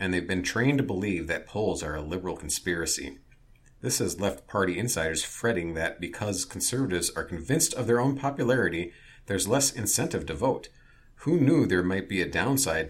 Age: 40-59